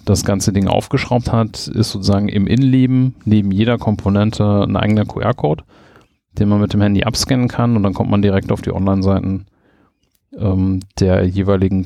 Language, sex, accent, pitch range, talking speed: German, male, German, 95-110 Hz, 165 wpm